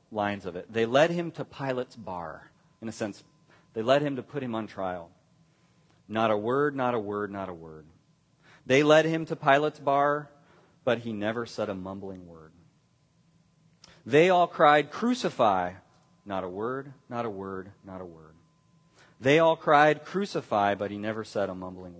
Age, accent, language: 30-49, American, English